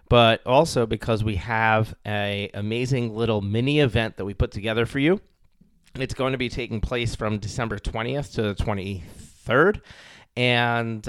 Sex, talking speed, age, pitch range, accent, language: male, 160 wpm, 30-49, 105-125 Hz, American, English